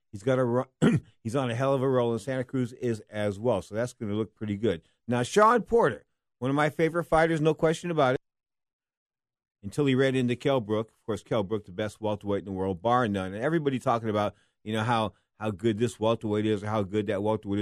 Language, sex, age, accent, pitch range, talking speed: English, male, 50-69, American, 110-150 Hz, 235 wpm